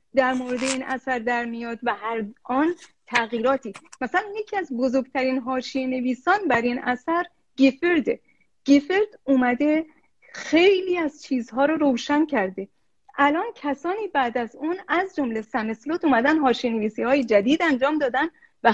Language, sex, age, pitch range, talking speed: Persian, female, 40-59, 235-310 Hz, 135 wpm